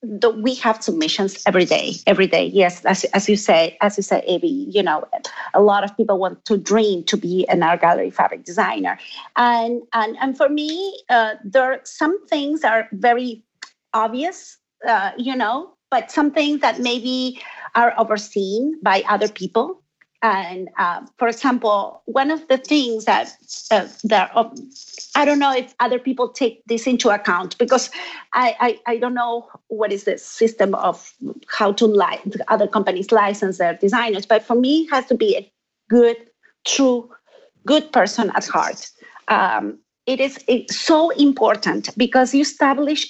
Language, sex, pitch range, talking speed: English, female, 205-265 Hz, 175 wpm